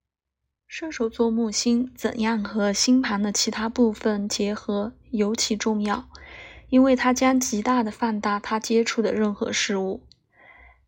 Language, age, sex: Chinese, 20-39, female